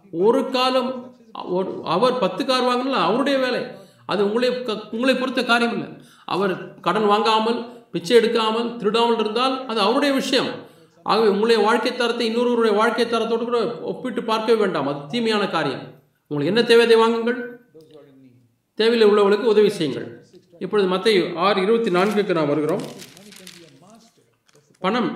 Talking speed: 120 wpm